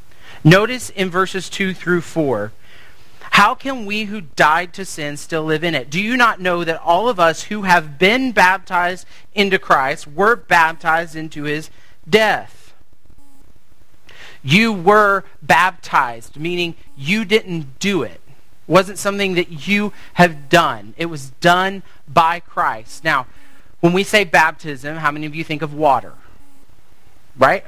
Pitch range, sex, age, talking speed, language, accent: 140-180 Hz, male, 40-59, 150 wpm, English, American